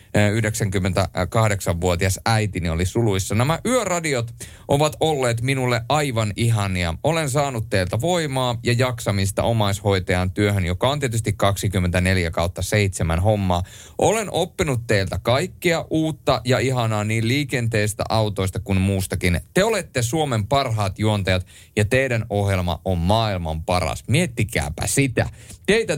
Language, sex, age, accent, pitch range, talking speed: Finnish, male, 30-49, native, 95-125 Hz, 115 wpm